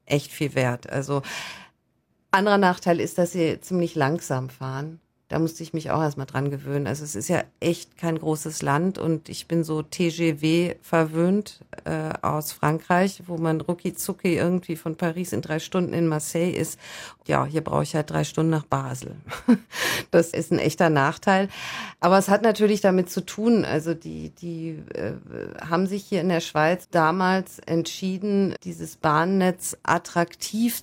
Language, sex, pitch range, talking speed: German, female, 160-195 Hz, 165 wpm